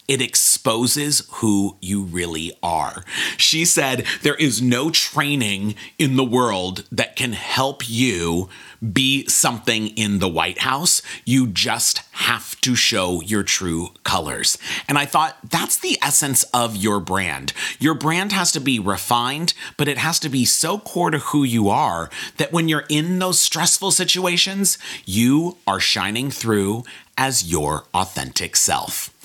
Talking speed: 150 wpm